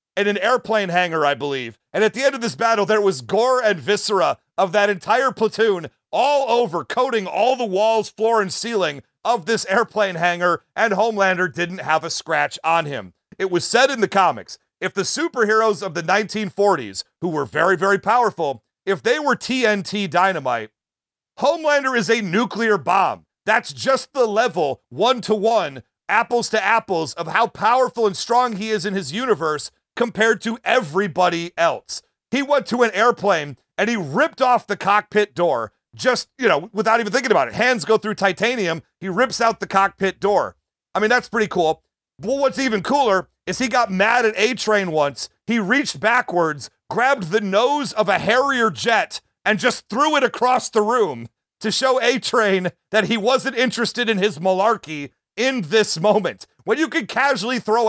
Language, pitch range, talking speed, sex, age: English, 185-235 Hz, 175 wpm, male, 40-59